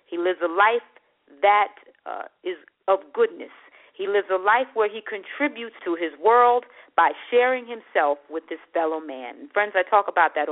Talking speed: 175 wpm